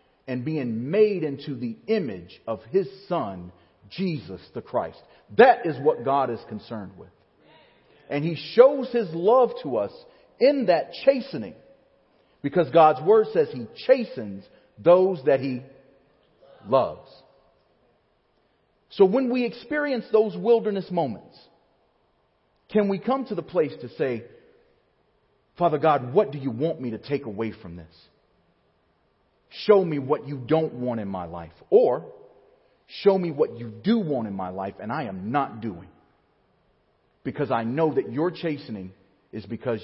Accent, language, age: American, English, 40-59